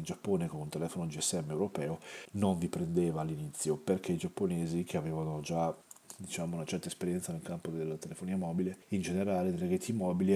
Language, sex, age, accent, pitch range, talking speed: Italian, male, 40-59, native, 85-115 Hz, 180 wpm